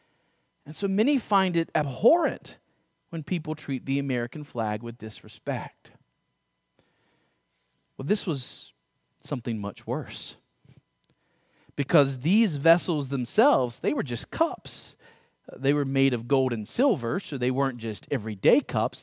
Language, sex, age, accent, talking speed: English, male, 40-59, American, 130 wpm